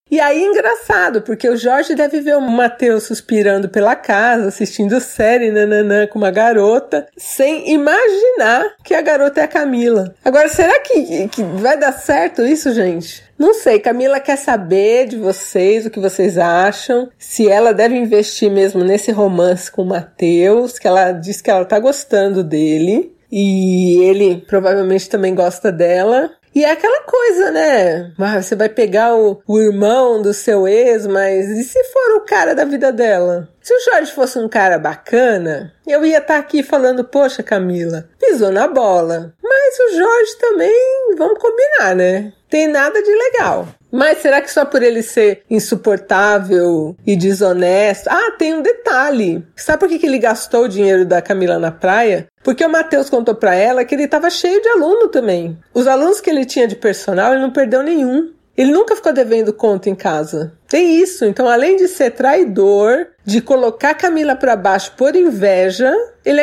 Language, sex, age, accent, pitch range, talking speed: Portuguese, female, 40-59, Brazilian, 195-300 Hz, 175 wpm